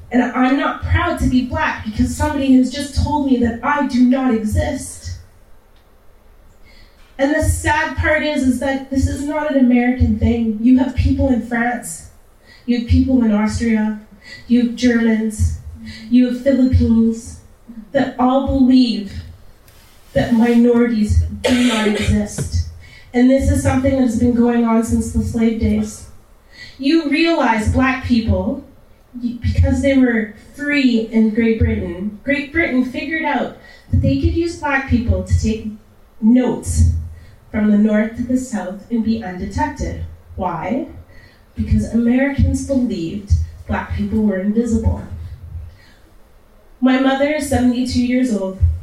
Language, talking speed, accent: English, 140 wpm, American